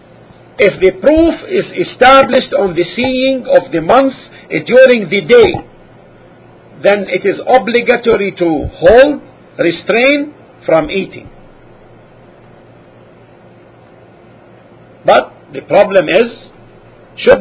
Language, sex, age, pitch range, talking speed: English, male, 50-69, 185-260 Hz, 100 wpm